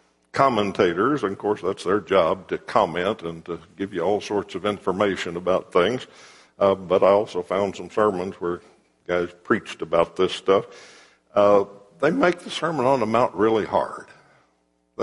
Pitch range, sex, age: 75-115 Hz, male, 60-79